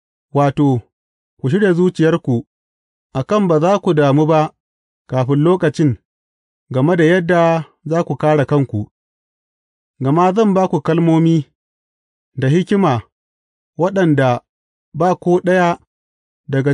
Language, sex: English, male